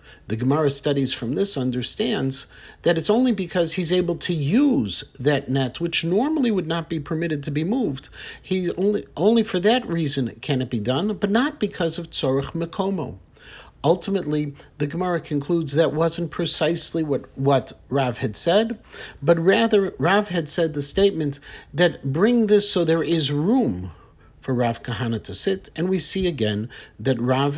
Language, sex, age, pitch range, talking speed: English, male, 50-69, 140-200 Hz, 170 wpm